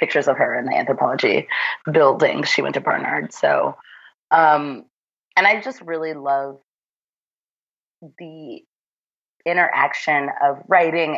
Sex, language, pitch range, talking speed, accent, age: female, English, 140-170 Hz, 120 wpm, American, 30-49